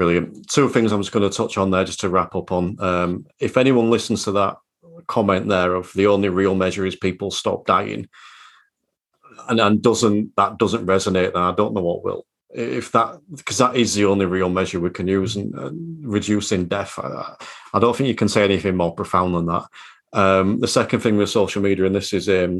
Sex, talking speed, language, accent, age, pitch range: male, 220 wpm, English, British, 40-59, 95-120 Hz